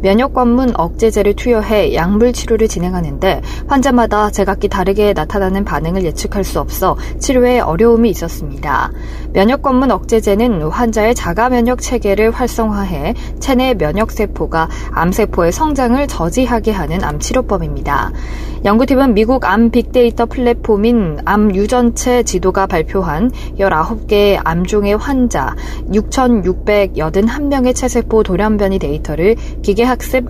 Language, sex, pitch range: Korean, female, 185-240 Hz